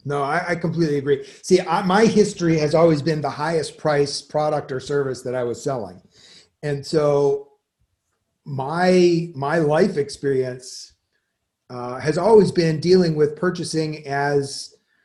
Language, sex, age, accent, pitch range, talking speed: English, male, 40-59, American, 140-185 Hz, 140 wpm